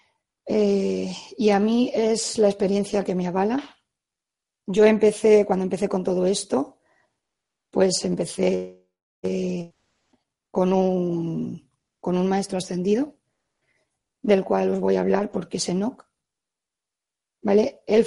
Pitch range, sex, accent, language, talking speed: 185-210 Hz, female, Spanish, Spanish, 125 wpm